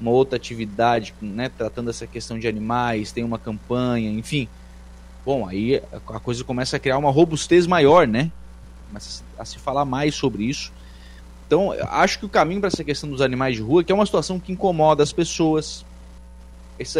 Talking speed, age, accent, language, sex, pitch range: 185 wpm, 20-39, Brazilian, Portuguese, male, 100-145 Hz